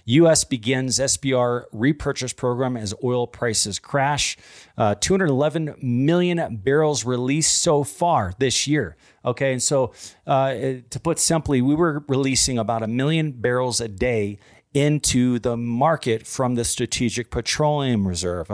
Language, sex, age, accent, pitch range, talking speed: English, male, 40-59, American, 115-145 Hz, 140 wpm